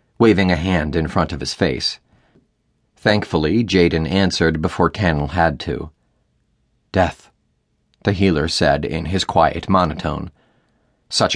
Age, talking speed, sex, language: 40-59, 125 wpm, male, English